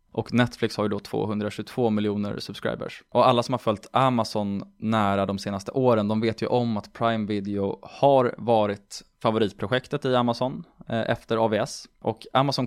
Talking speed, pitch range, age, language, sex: 160 wpm, 105-125 Hz, 20-39, Swedish, male